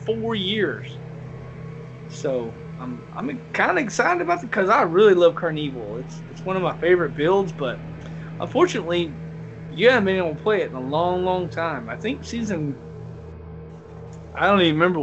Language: English